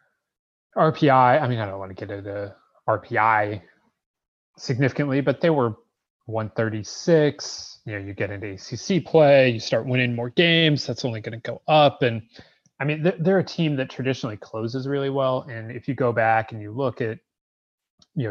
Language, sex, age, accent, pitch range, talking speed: English, male, 30-49, American, 115-145 Hz, 175 wpm